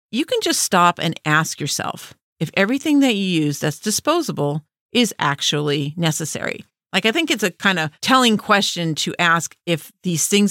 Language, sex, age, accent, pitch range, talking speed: English, female, 40-59, American, 160-215 Hz, 175 wpm